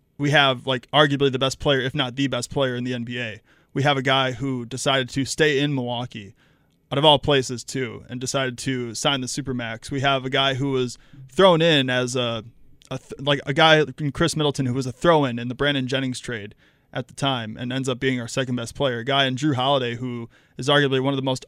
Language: English